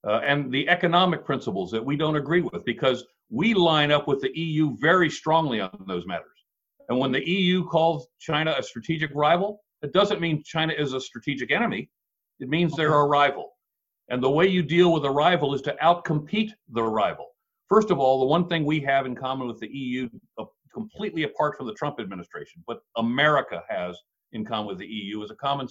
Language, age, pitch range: English, 50-69, 125-170 Hz